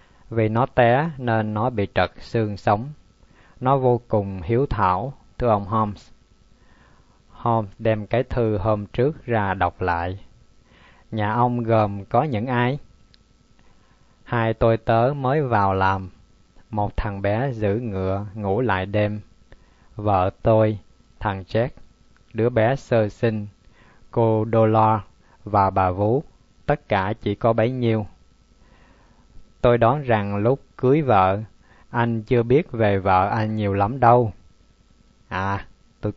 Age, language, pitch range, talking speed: 20-39, Vietnamese, 100-115 Hz, 135 wpm